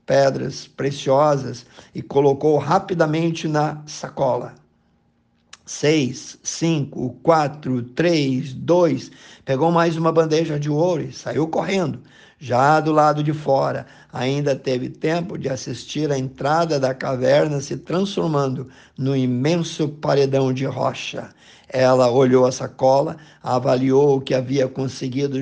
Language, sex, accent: Portuguese, male, Brazilian